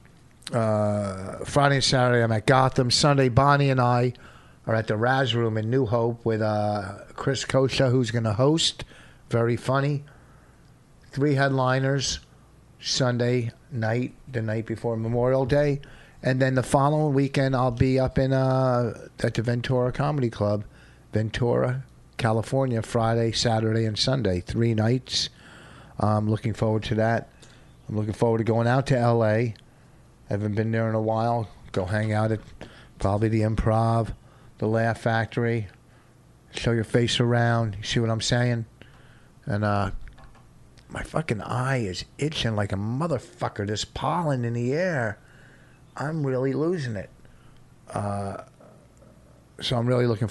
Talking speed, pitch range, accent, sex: 150 wpm, 110-130 Hz, American, male